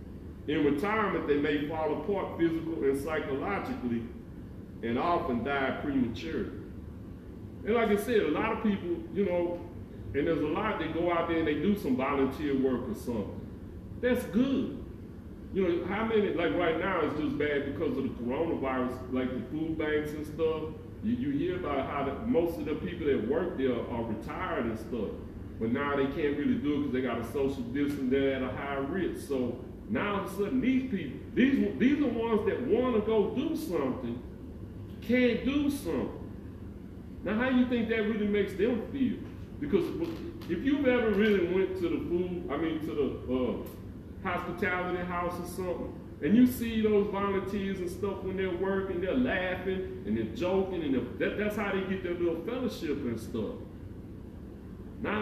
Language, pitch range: English, 135-215 Hz